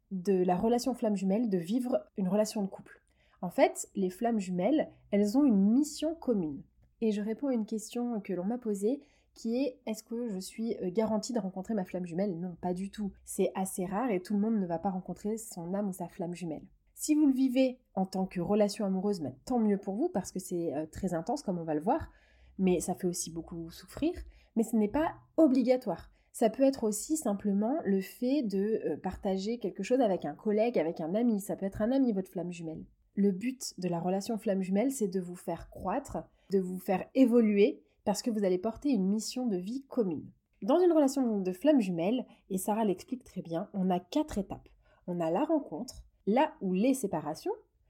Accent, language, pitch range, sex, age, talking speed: French, French, 185-245 Hz, female, 30-49, 215 wpm